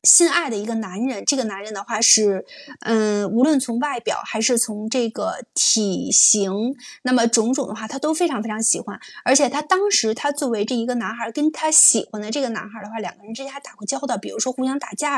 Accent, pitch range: native, 215-275 Hz